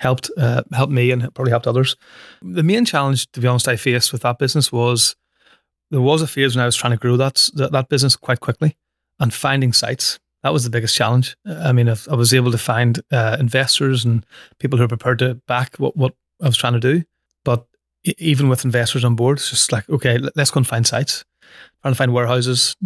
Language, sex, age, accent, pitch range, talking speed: English, male, 30-49, Irish, 120-135 Hz, 230 wpm